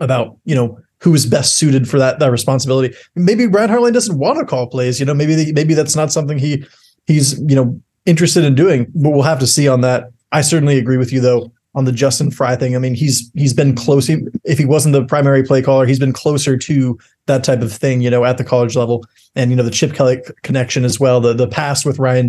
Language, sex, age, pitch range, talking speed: English, male, 30-49, 130-155 Hz, 255 wpm